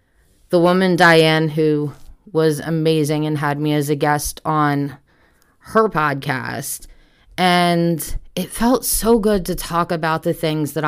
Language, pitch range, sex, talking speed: English, 155-180 Hz, female, 145 wpm